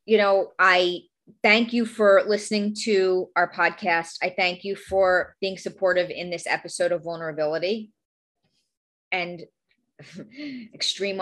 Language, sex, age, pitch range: English, female, 30-49, 175-205 Hz